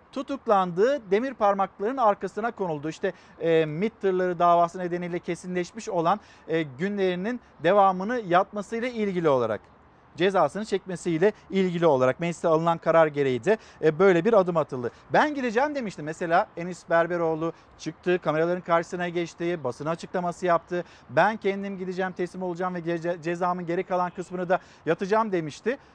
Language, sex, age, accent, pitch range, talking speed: Turkish, male, 50-69, native, 170-220 Hz, 140 wpm